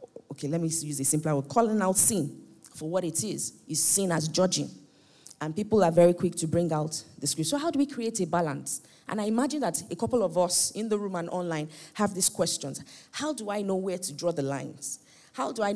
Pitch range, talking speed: 145-185 Hz, 240 wpm